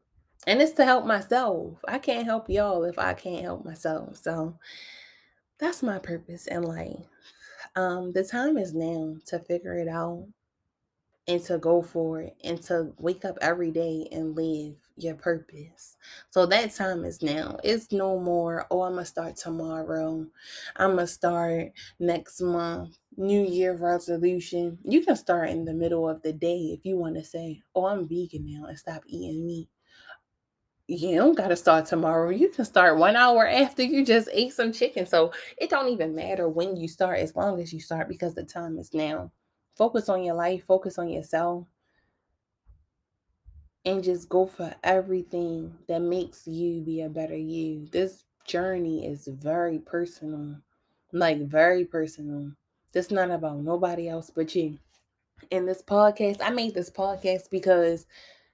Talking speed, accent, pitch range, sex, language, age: 170 wpm, American, 160-190 Hz, female, English, 20-39